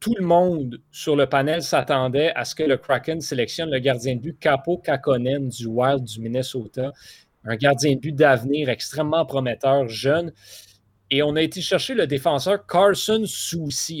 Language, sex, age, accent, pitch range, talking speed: French, male, 30-49, Canadian, 125-160 Hz, 170 wpm